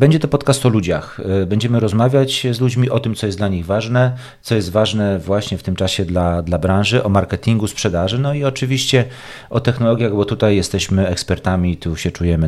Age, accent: 40-59, native